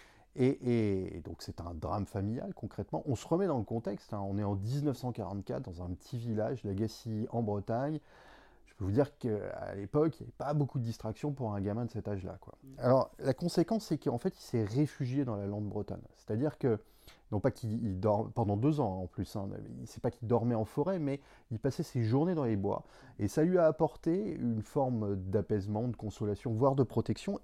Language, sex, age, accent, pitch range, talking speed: French, male, 30-49, French, 105-140 Hz, 225 wpm